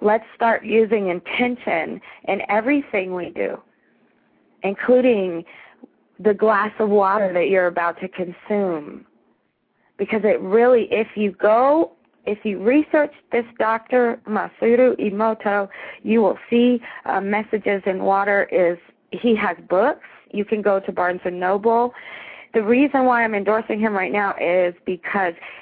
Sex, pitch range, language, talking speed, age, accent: female, 185-240 Hz, English, 140 wpm, 40-59, American